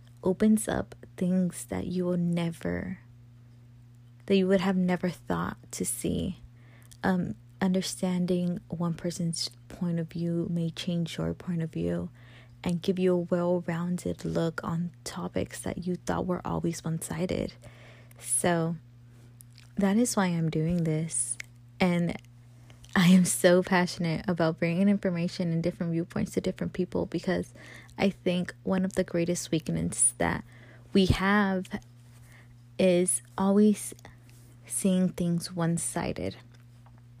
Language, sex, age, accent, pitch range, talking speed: English, female, 20-39, American, 120-180 Hz, 125 wpm